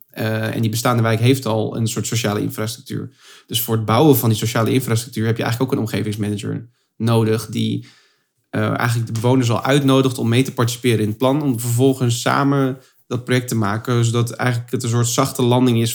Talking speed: 205 wpm